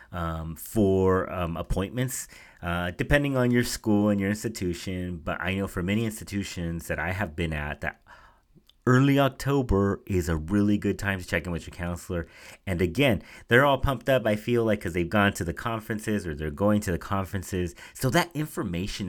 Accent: American